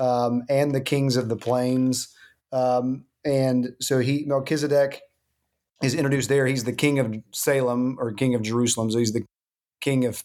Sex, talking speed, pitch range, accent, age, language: male, 170 wpm, 120-140 Hz, American, 40-59, English